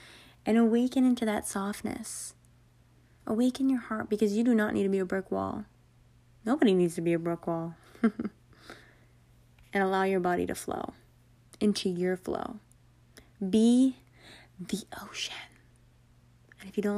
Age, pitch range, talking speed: 20-39, 120-200 Hz, 145 wpm